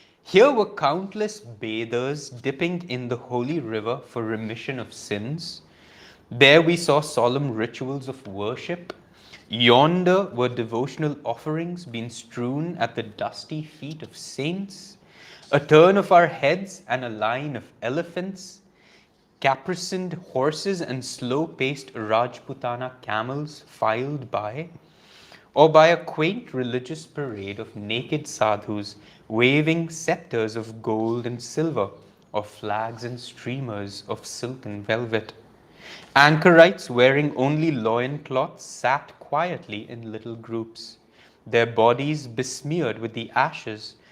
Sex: male